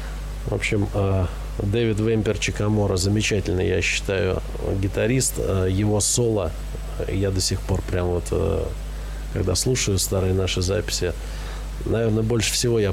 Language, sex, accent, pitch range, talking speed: Russian, male, native, 95-105 Hz, 120 wpm